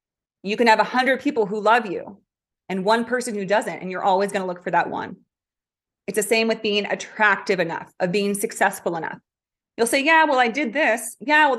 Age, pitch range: 30-49, 190-235 Hz